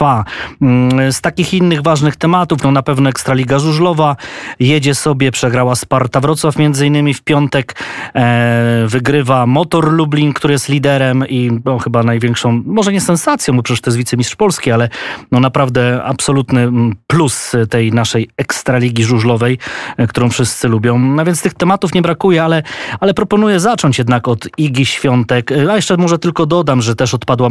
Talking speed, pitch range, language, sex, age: 160 wpm, 120-145 Hz, Polish, male, 20-39